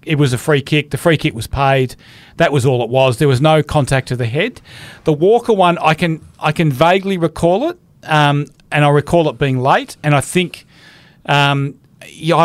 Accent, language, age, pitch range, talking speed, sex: Australian, English, 40-59, 135-160 Hz, 210 wpm, male